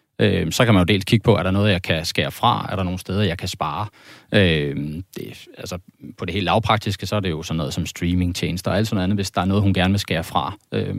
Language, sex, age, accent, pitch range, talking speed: Danish, male, 30-49, native, 90-110 Hz, 285 wpm